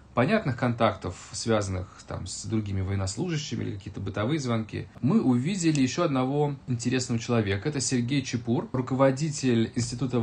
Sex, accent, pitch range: male, native, 105-130 Hz